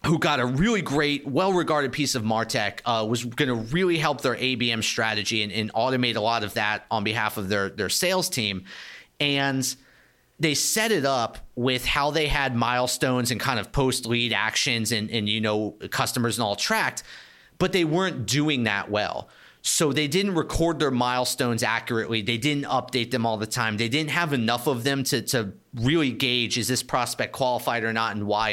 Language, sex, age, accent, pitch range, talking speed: English, male, 30-49, American, 115-145 Hz, 195 wpm